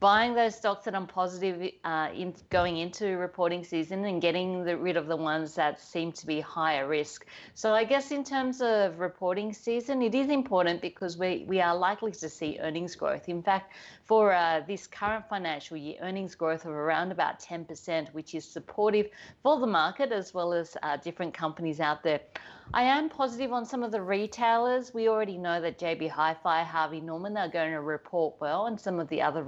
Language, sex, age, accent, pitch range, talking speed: English, female, 40-59, Australian, 160-205 Hz, 200 wpm